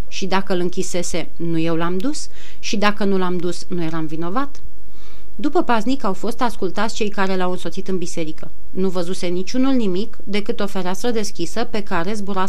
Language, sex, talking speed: Romanian, female, 185 wpm